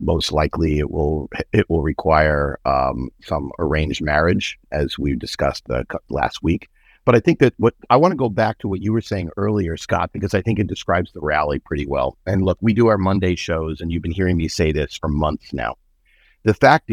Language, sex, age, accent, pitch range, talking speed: English, male, 50-69, American, 80-105 Hz, 215 wpm